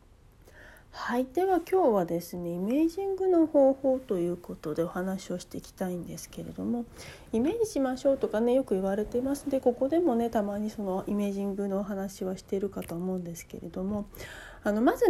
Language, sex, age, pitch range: Japanese, female, 40-59, 185-270 Hz